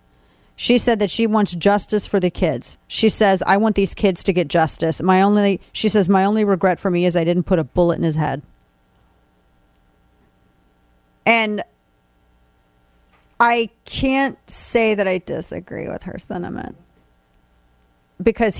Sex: female